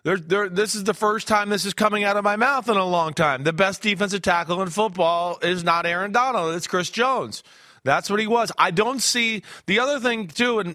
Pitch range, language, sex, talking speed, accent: 160-205 Hz, English, male, 230 wpm, American